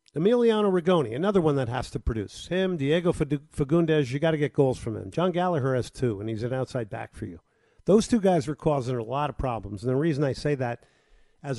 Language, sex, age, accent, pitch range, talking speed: English, male, 50-69, American, 120-155 Hz, 235 wpm